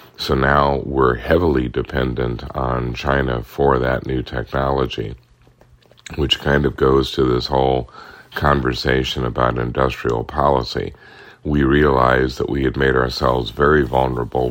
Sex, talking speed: male, 130 wpm